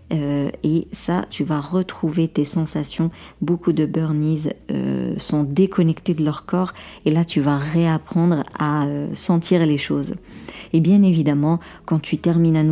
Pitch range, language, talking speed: 150-180 Hz, French, 160 wpm